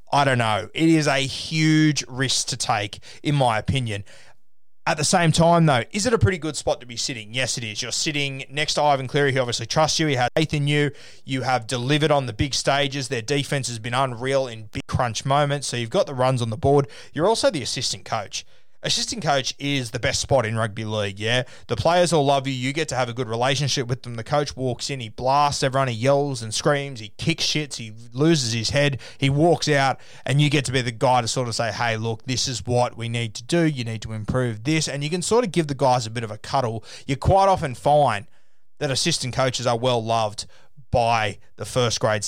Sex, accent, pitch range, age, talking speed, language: male, Australian, 120-145 Hz, 20-39, 240 wpm, English